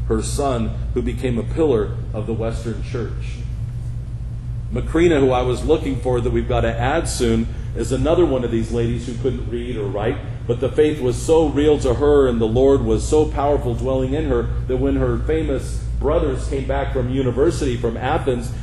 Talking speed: 195 wpm